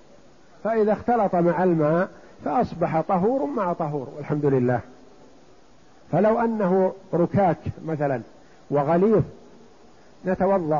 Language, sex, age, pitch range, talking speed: Arabic, male, 50-69, 150-195 Hz, 90 wpm